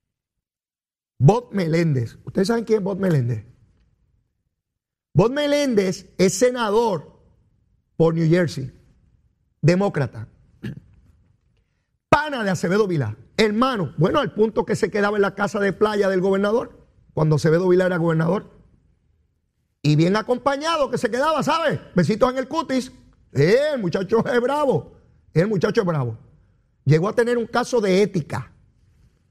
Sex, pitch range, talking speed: male, 125-210 Hz, 135 wpm